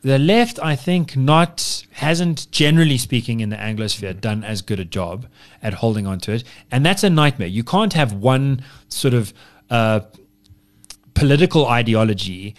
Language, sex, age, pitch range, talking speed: English, male, 30-49, 100-135 Hz, 160 wpm